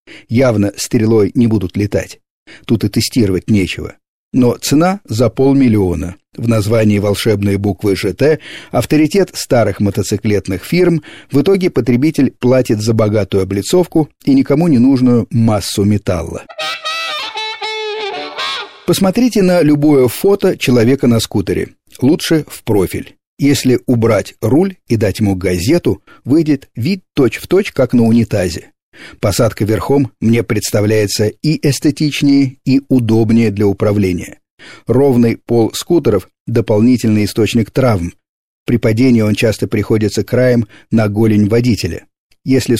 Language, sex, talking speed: Russian, male, 120 wpm